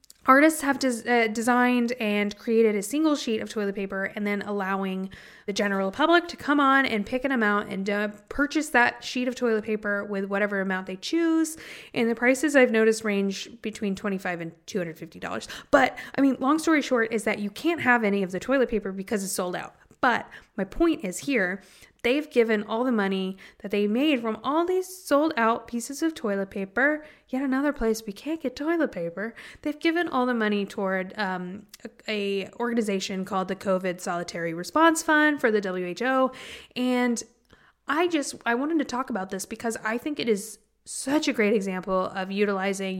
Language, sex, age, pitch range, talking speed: English, female, 20-39, 195-255 Hz, 190 wpm